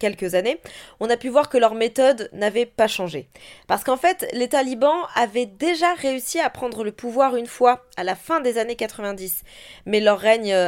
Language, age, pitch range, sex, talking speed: French, 20-39, 200-250 Hz, female, 195 wpm